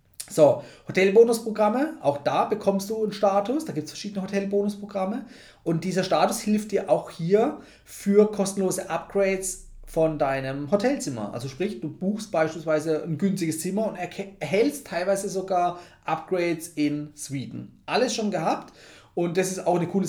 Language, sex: German, male